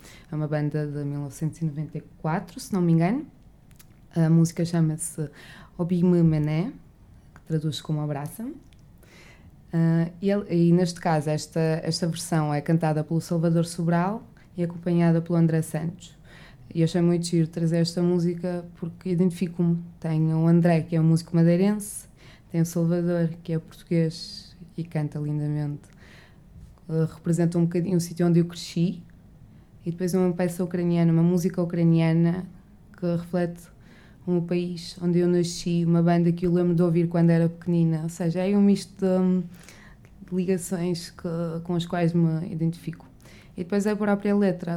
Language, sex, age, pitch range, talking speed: Portuguese, female, 20-39, 160-175 Hz, 160 wpm